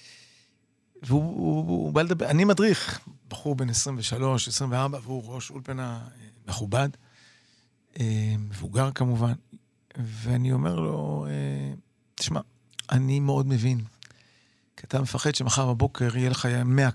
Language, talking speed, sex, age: Hebrew, 105 wpm, male, 40-59